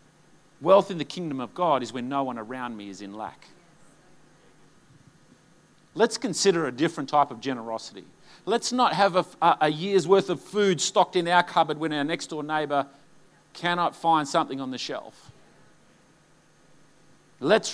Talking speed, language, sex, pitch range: 160 wpm, English, male, 125-165 Hz